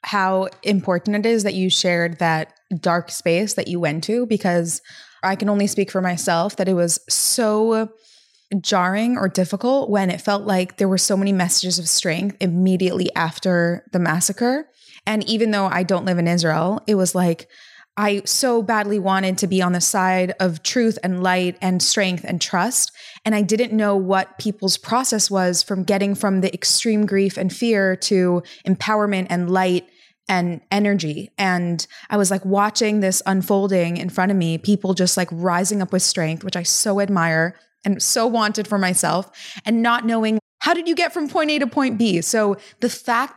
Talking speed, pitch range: 190 wpm, 180-210 Hz